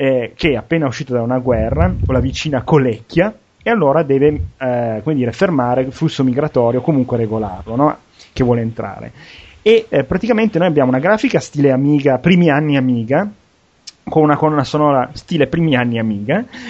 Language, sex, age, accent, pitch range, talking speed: Italian, male, 30-49, native, 125-160 Hz, 170 wpm